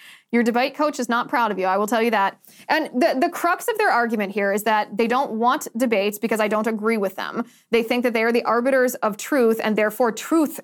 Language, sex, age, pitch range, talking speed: English, female, 20-39, 215-270 Hz, 255 wpm